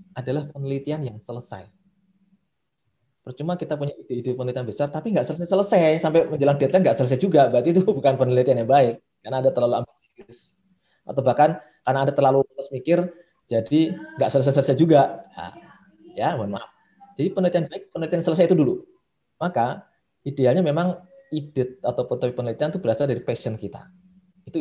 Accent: native